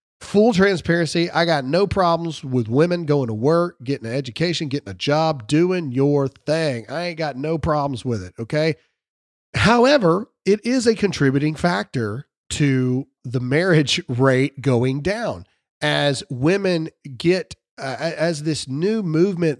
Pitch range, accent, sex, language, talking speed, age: 135-175 Hz, American, male, English, 145 wpm, 40-59